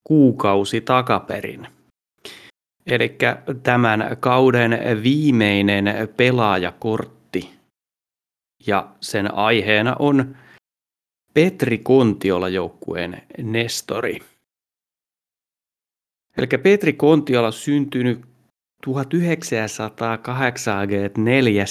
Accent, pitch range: native, 105-130 Hz